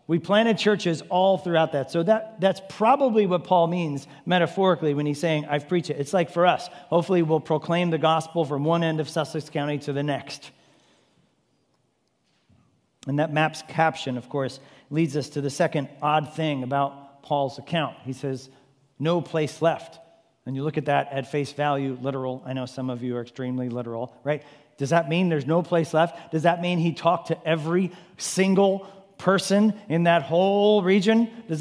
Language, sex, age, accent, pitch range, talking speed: English, male, 40-59, American, 140-175 Hz, 185 wpm